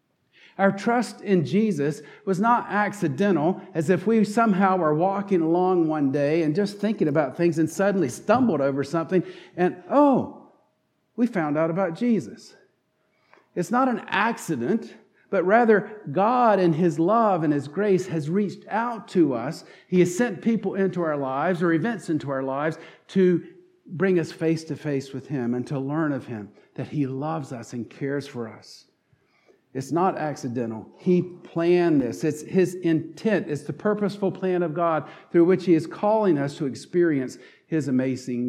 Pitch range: 145-195 Hz